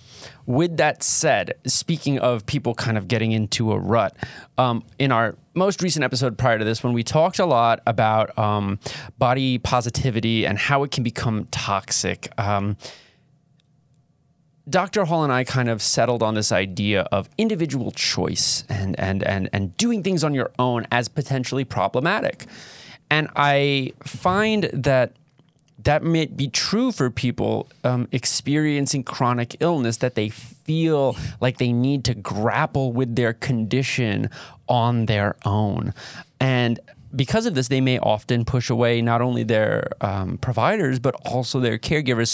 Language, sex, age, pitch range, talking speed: English, male, 20-39, 115-145 Hz, 155 wpm